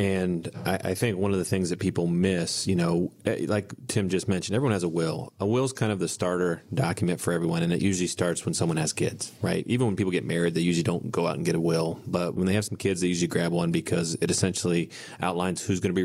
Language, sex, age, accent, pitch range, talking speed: English, male, 30-49, American, 85-105 Hz, 265 wpm